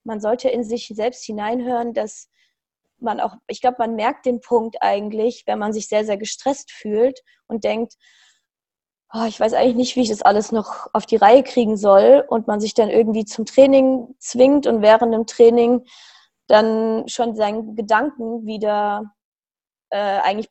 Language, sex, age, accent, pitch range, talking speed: German, female, 20-39, German, 220-270 Hz, 175 wpm